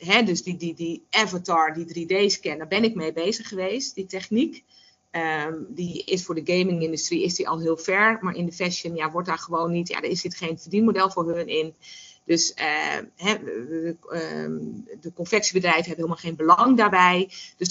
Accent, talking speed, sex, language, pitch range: Dutch, 195 wpm, female, Dutch, 160-195 Hz